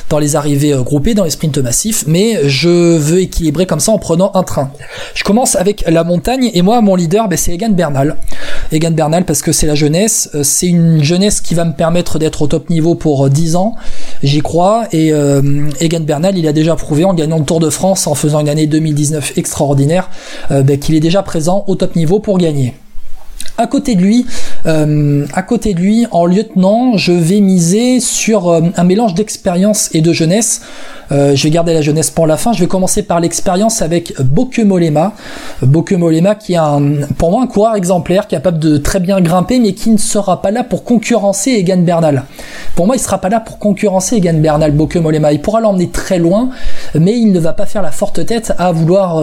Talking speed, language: 215 wpm, French